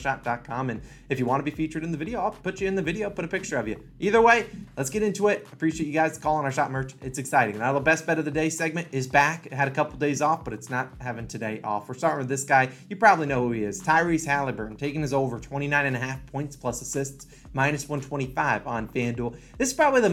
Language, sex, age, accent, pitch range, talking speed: English, male, 20-39, American, 125-160 Hz, 260 wpm